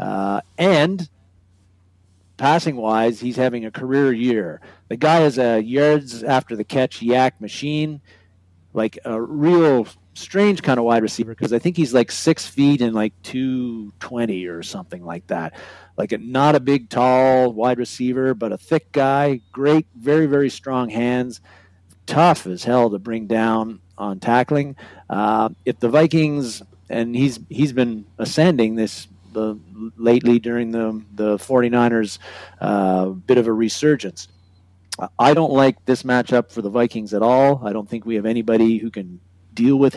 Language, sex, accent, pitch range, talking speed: English, male, American, 105-130 Hz, 155 wpm